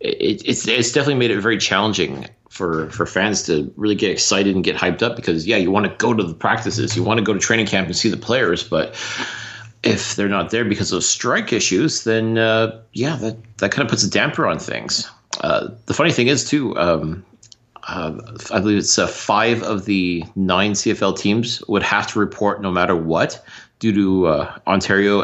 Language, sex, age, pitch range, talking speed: English, male, 40-59, 95-115 Hz, 210 wpm